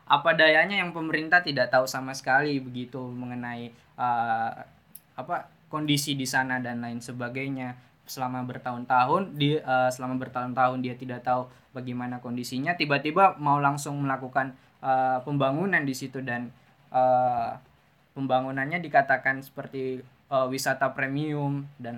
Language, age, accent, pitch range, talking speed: Indonesian, 10-29, native, 125-145 Hz, 125 wpm